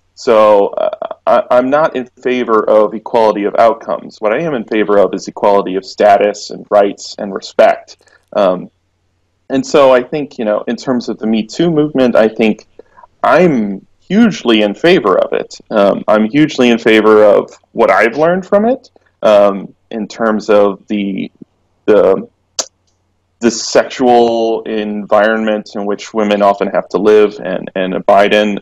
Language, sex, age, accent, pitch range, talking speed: English, male, 30-49, American, 100-120 Hz, 165 wpm